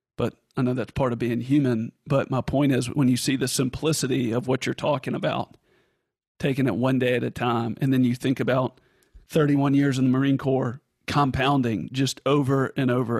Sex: male